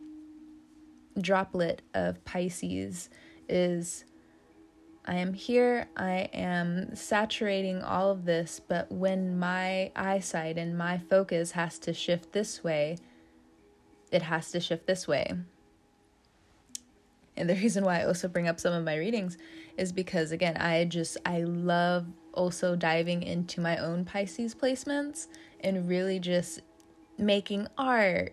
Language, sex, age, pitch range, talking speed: English, female, 20-39, 170-210 Hz, 130 wpm